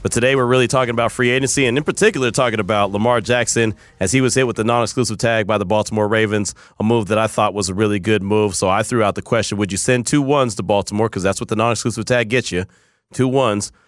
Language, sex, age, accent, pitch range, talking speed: English, male, 30-49, American, 110-160 Hz, 260 wpm